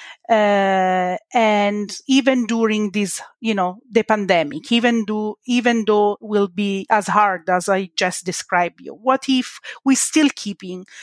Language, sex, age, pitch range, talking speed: English, female, 40-59, 200-240 Hz, 145 wpm